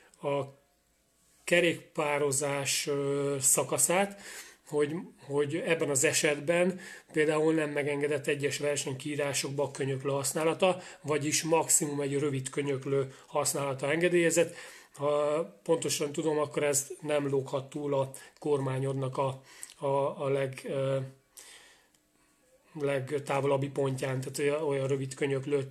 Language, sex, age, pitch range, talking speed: Hungarian, male, 30-49, 140-155 Hz, 105 wpm